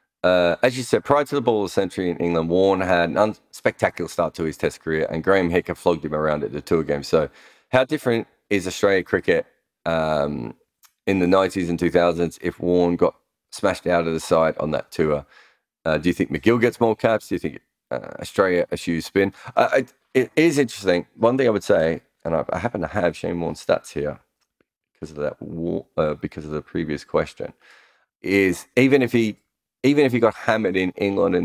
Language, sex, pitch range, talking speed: English, male, 80-100 Hz, 215 wpm